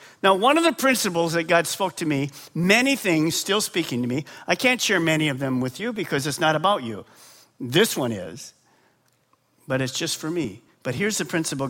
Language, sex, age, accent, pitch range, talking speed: English, male, 50-69, American, 145-235 Hz, 210 wpm